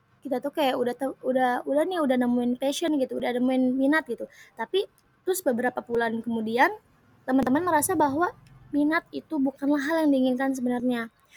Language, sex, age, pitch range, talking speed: Indonesian, female, 20-39, 245-285 Hz, 160 wpm